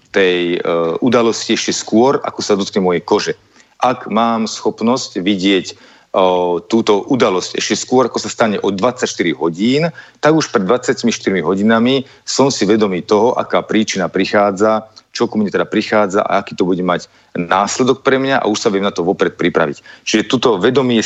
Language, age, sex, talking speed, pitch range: Slovak, 40-59, male, 175 wpm, 100-120 Hz